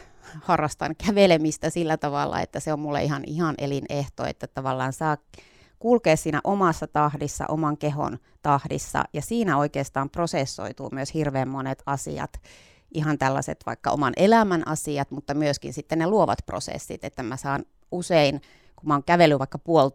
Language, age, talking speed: Finnish, 30-49, 155 wpm